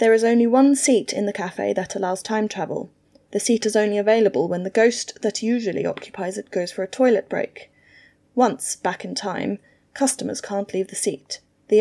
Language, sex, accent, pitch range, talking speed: English, female, British, 200-235 Hz, 200 wpm